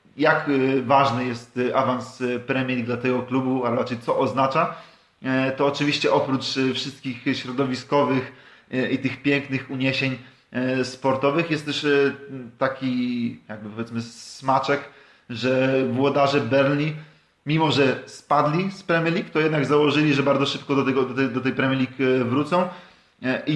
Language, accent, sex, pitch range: Polish, native, male, 130-145 Hz